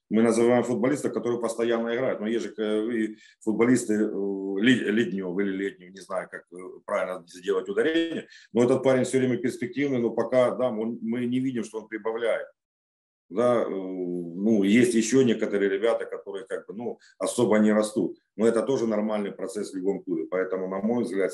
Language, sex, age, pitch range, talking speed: Ukrainian, male, 40-59, 95-120 Hz, 155 wpm